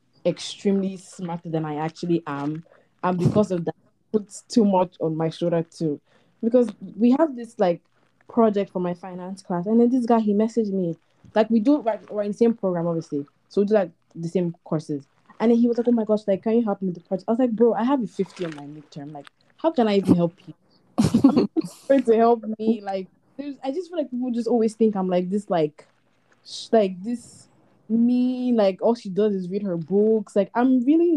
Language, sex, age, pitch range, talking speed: English, female, 20-39, 170-220 Hz, 230 wpm